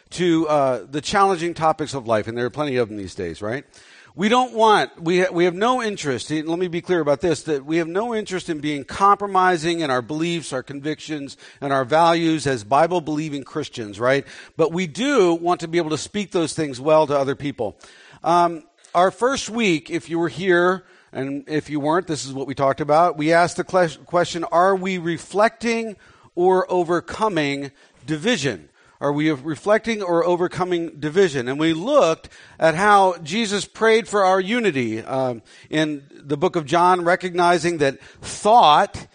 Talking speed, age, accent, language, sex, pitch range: 185 wpm, 50-69, American, English, male, 145-185 Hz